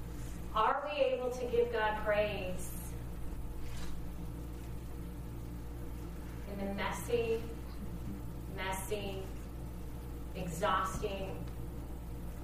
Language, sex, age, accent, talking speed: English, female, 30-49, American, 60 wpm